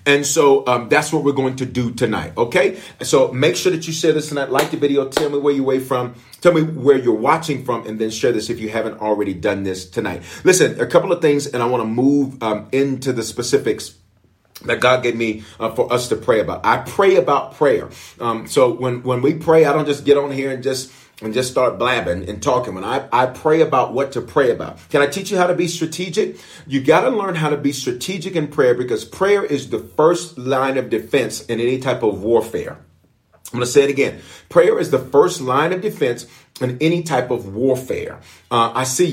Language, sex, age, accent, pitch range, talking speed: English, male, 40-59, American, 125-165 Hz, 235 wpm